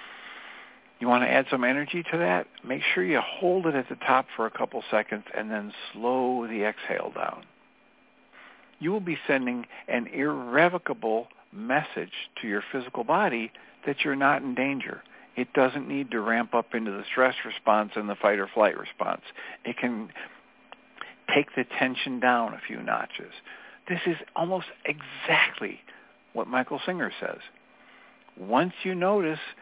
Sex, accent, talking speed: male, American, 160 wpm